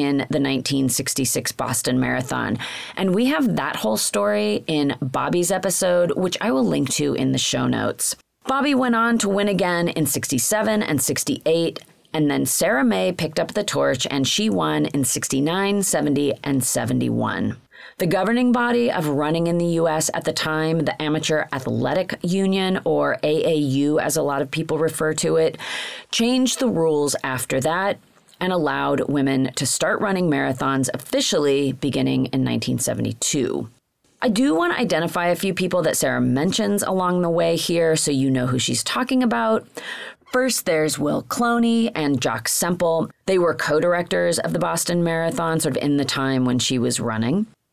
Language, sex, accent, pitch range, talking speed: English, female, American, 140-190 Hz, 170 wpm